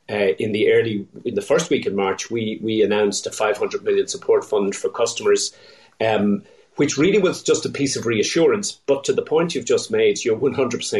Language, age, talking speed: English, 30-49, 200 wpm